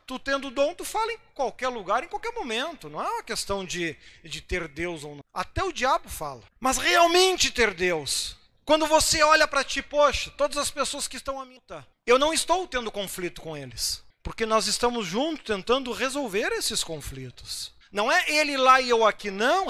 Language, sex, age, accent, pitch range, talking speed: Portuguese, male, 40-59, Brazilian, 220-330 Hz, 200 wpm